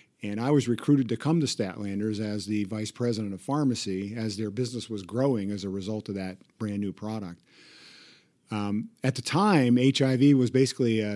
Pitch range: 105-135 Hz